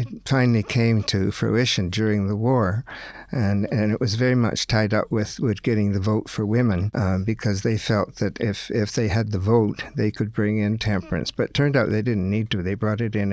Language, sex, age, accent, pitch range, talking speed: English, male, 60-79, American, 100-120 Hz, 225 wpm